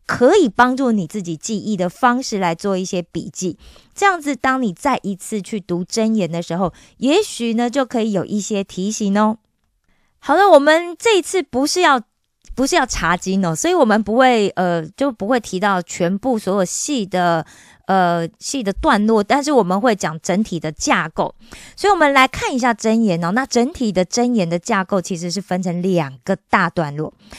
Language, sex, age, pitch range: Korean, female, 20-39, 185-255 Hz